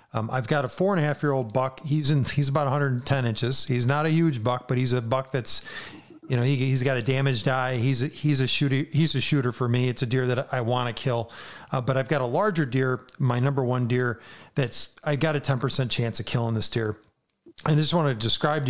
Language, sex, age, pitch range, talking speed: English, male, 40-59, 120-145 Hz, 255 wpm